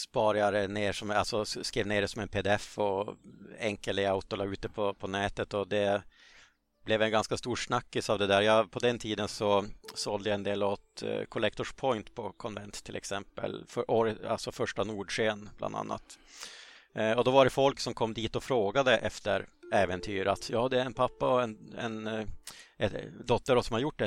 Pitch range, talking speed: 100-115 Hz, 195 wpm